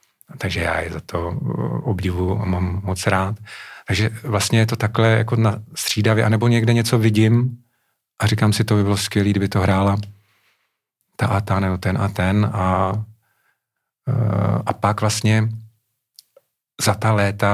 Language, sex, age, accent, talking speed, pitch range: Czech, male, 40-59, native, 155 wpm, 95-110 Hz